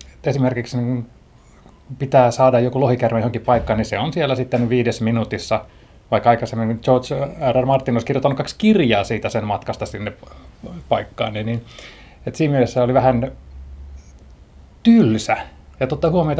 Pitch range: 110-140 Hz